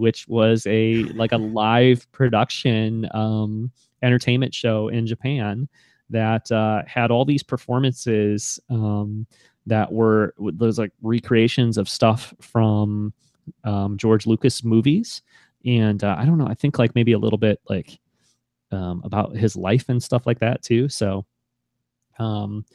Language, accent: English, American